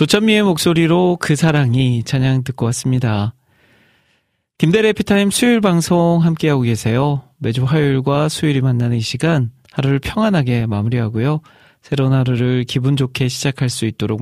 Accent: native